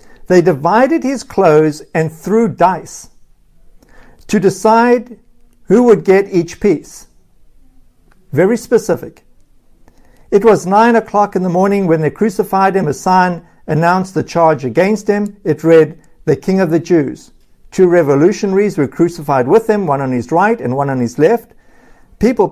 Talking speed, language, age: 150 wpm, English, 60-79